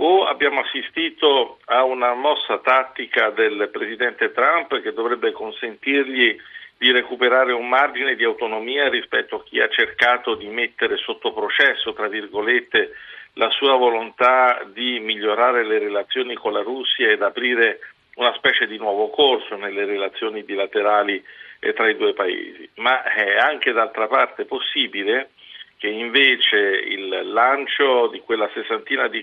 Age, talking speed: 50-69, 140 wpm